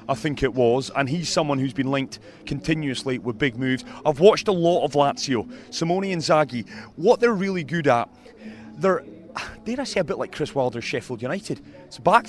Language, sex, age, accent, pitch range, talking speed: English, male, 30-49, British, 130-170 Hz, 200 wpm